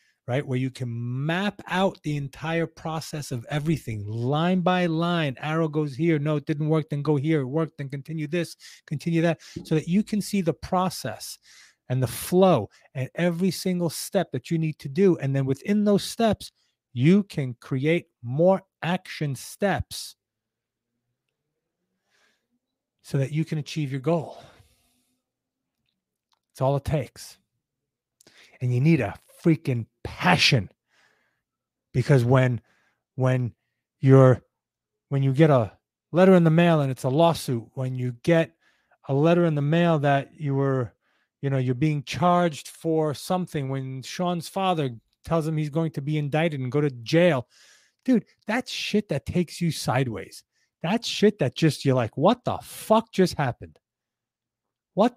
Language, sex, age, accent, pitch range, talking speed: English, male, 30-49, American, 130-170 Hz, 160 wpm